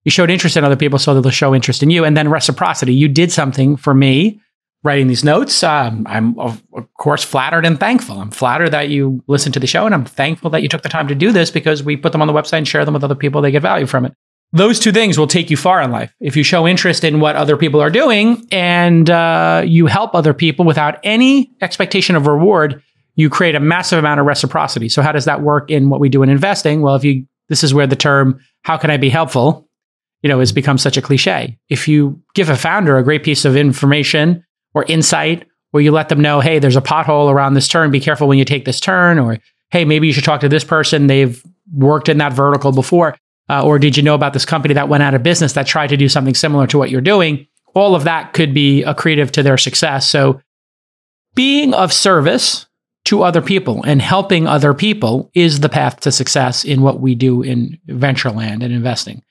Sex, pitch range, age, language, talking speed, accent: male, 140-165 Hz, 30-49, English, 240 wpm, American